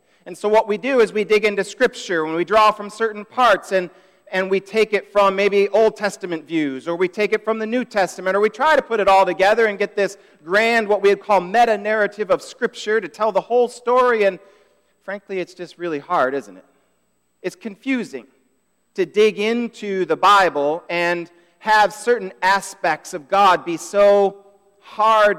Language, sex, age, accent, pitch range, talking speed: English, male, 40-59, American, 175-220 Hz, 195 wpm